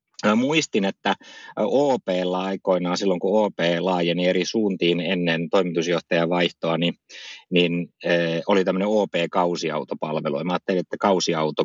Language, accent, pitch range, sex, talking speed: Finnish, native, 80-95 Hz, male, 130 wpm